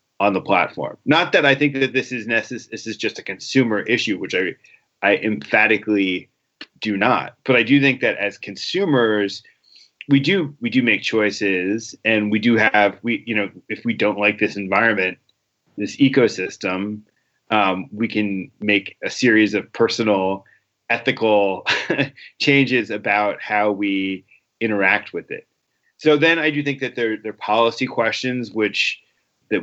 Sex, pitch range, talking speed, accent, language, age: male, 100-120 Hz, 160 wpm, American, English, 30-49